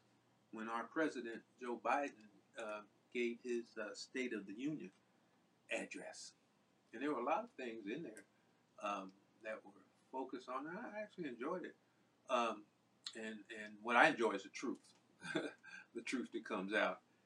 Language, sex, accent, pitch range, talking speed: English, male, American, 105-145 Hz, 165 wpm